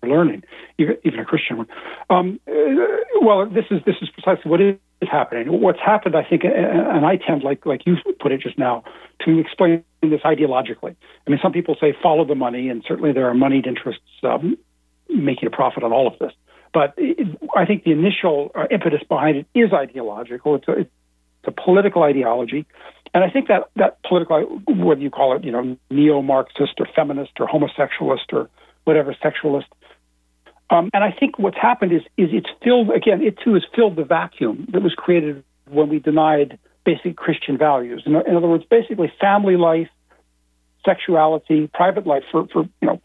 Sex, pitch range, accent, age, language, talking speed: male, 140-190 Hz, American, 60-79, English, 185 wpm